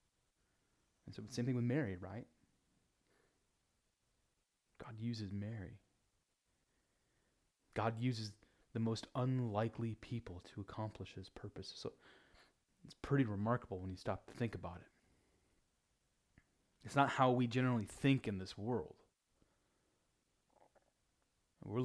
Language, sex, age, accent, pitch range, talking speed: English, male, 30-49, American, 95-125 Hz, 115 wpm